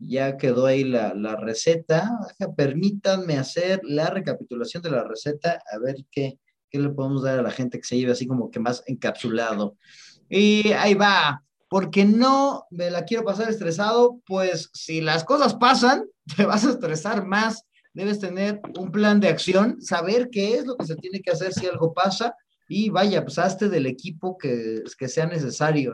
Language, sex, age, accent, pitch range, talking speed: Spanish, male, 30-49, Mexican, 150-215 Hz, 185 wpm